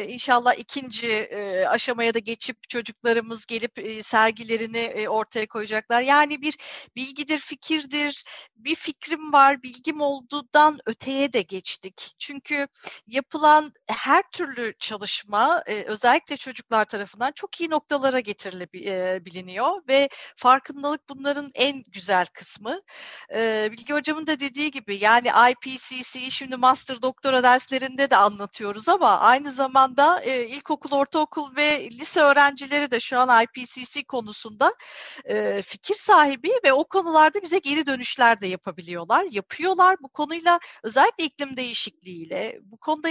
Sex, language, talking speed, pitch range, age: female, Turkish, 120 wpm, 230-300 Hz, 40-59